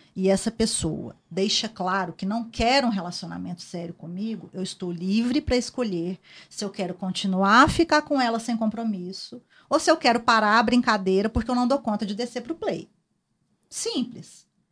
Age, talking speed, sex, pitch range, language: 40-59, 185 wpm, female, 205-300 Hz, Portuguese